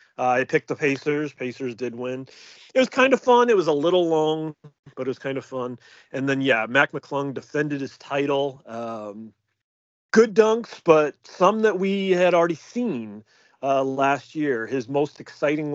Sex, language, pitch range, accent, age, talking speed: male, English, 125-155 Hz, American, 30-49, 185 wpm